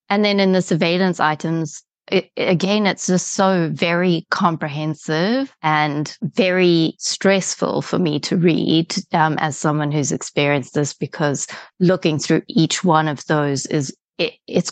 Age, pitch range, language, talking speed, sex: 20-39, 150-185 Hz, English, 140 wpm, female